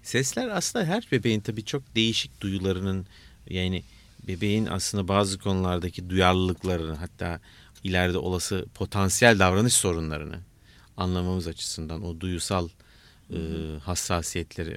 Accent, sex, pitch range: native, male, 90-105 Hz